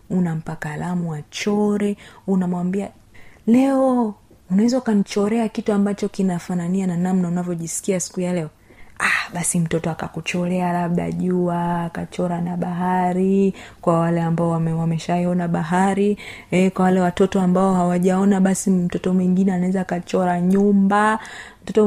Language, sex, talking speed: Swahili, female, 125 wpm